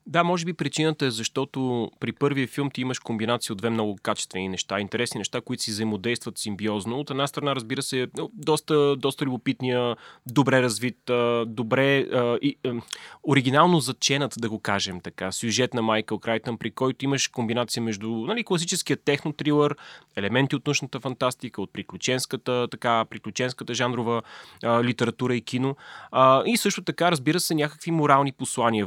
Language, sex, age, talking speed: Bulgarian, male, 20-39, 160 wpm